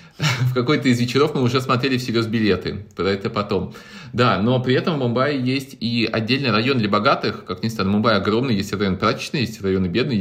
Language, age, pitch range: Russian, 30-49, 105-130 Hz